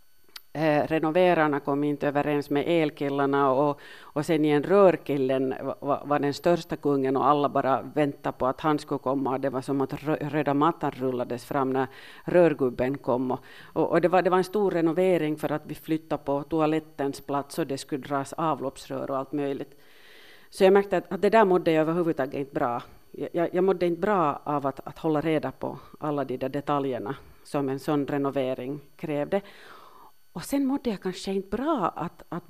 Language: Finnish